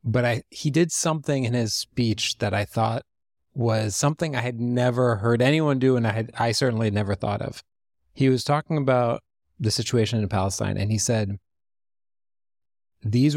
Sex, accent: male, American